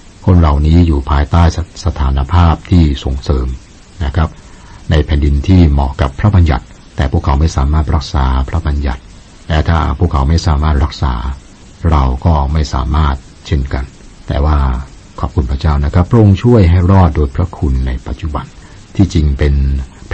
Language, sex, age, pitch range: Thai, male, 60-79, 70-90 Hz